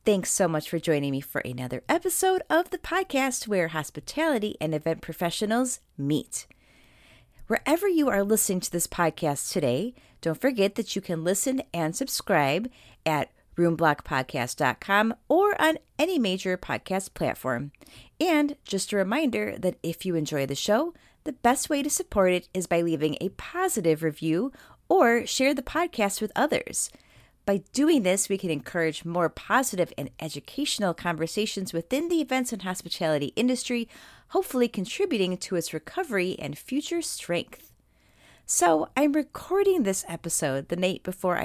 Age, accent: 30-49, American